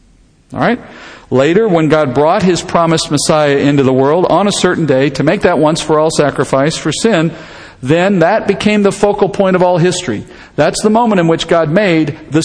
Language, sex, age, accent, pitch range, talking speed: English, male, 50-69, American, 145-195 Hz, 200 wpm